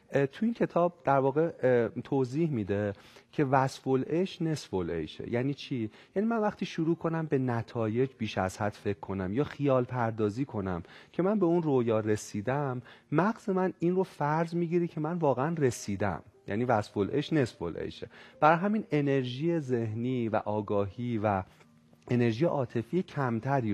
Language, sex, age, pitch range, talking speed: Persian, male, 40-59, 110-160 Hz, 145 wpm